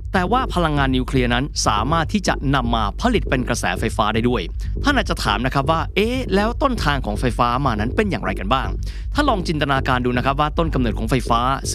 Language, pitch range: Thai, 110-150 Hz